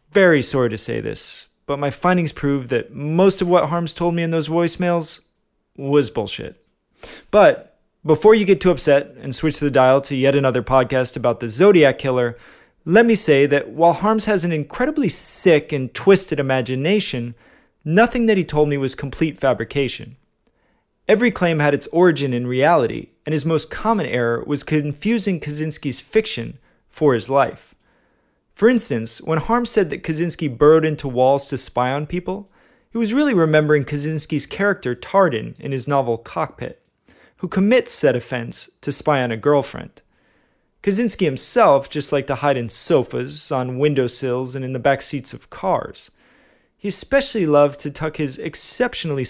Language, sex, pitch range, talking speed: English, male, 135-180 Hz, 165 wpm